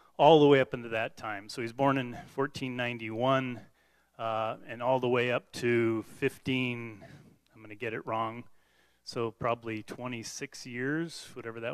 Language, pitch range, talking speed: English, 115-130 Hz, 165 wpm